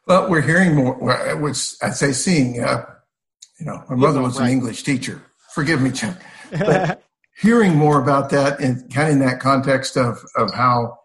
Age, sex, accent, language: 60-79, male, American, English